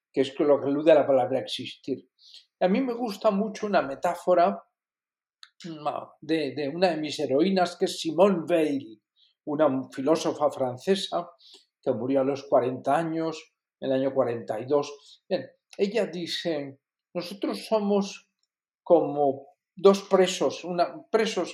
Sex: male